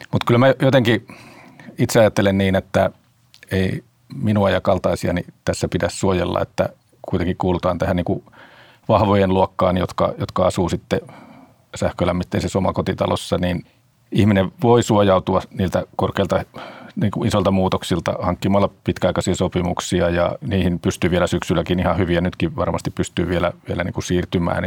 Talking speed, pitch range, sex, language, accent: 125 wpm, 90-110 Hz, male, Finnish, native